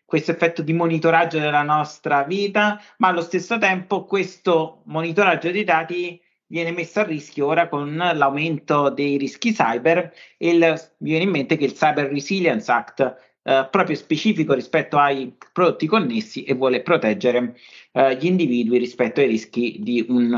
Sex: male